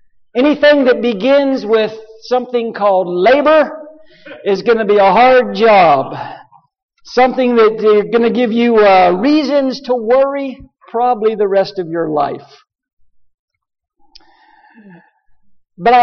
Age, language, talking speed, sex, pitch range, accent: 50-69, English, 120 wpm, male, 160-245 Hz, American